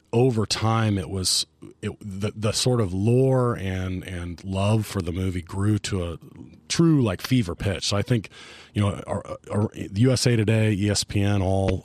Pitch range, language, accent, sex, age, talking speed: 85-110 Hz, English, American, male, 30-49, 155 wpm